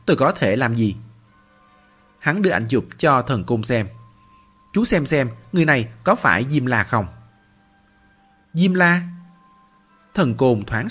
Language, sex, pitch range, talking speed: Vietnamese, male, 105-150 Hz, 155 wpm